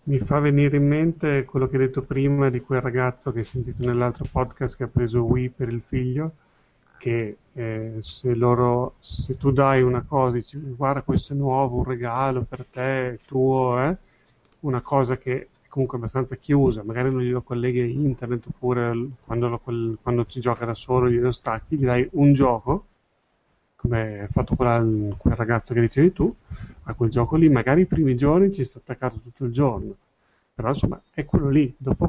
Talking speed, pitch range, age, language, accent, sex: 195 wpm, 120-135 Hz, 30-49, Italian, native, male